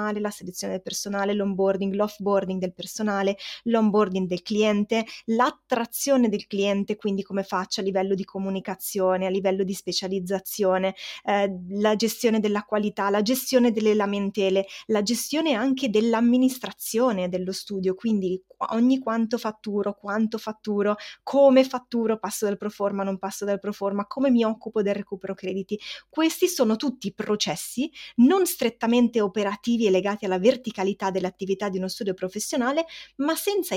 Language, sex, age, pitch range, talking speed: Italian, female, 20-39, 195-240 Hz, 140 wpm